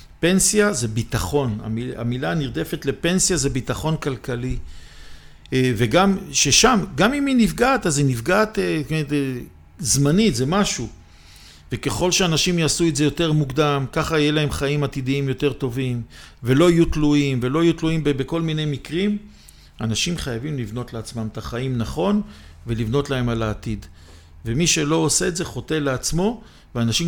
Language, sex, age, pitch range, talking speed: Hebrew, male, 50-69, 115-160 Hz, 140 wpm